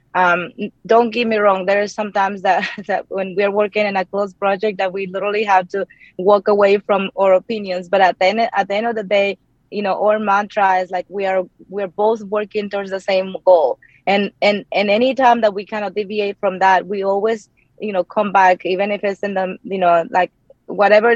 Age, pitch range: 20-39, 185-210 Hz